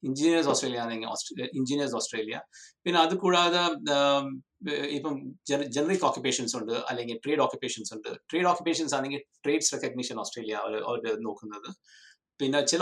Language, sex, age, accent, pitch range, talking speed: Malayalam, male, 60-79, native, 125-185 Hz, 125 wpm